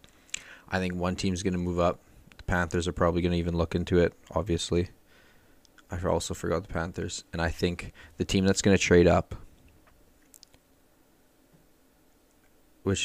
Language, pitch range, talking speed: English, 85-90 Hz, 160 wpm